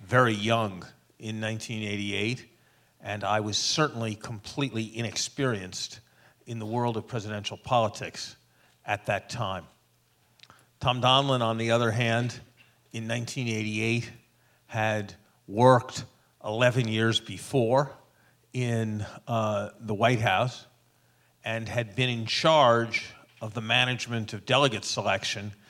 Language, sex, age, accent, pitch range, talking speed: English, male, 50-69, American, 105-120 Hz, 110 wpm